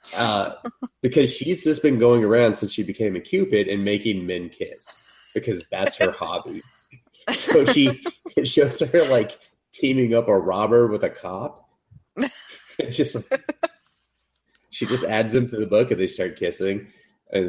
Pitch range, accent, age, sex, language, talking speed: 100-140 Hz, American, 30-49, male, English, 150 wpm